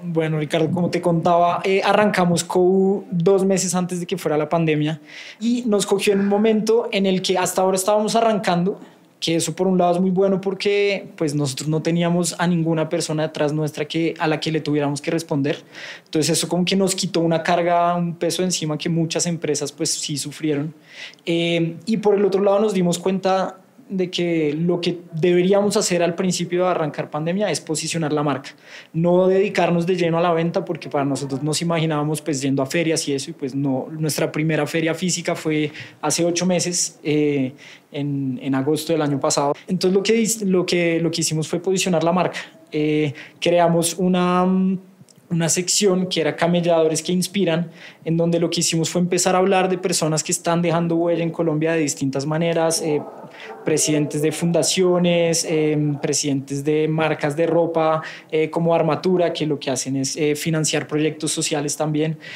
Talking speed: 190 wpm